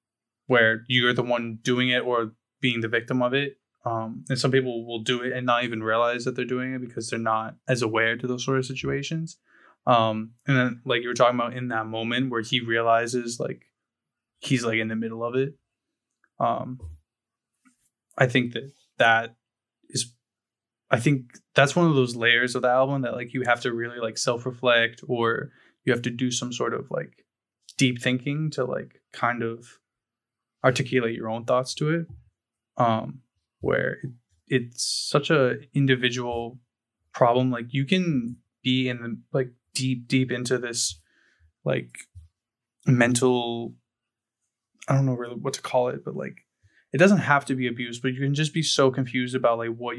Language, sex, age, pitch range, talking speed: English, male, 20-39, 115-130 Hz, 180 wpm